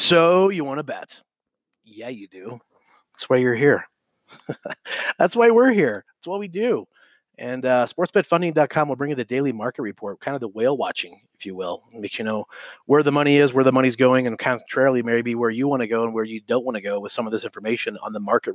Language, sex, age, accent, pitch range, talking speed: English, male, 30-49, American, 115-140 Hz, 235 wpm